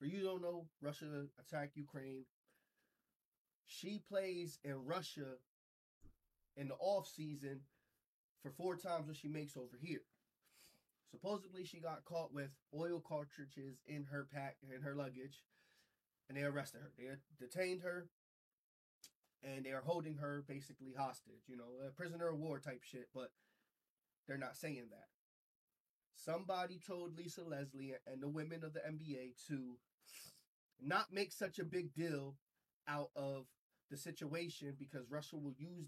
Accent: American